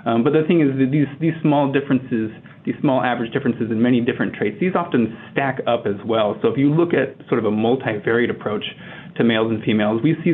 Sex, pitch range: male, 115-145 Hz